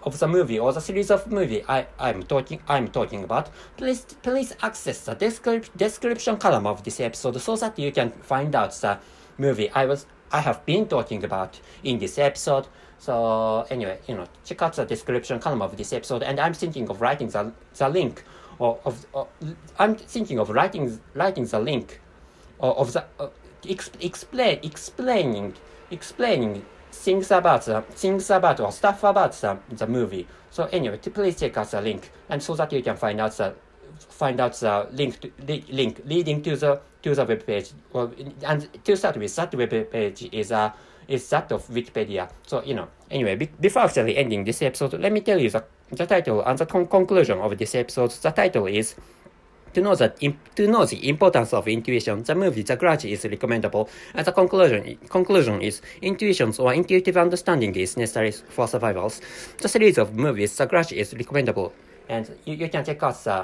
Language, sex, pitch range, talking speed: English, male, 115-190 Hz, 195 wpm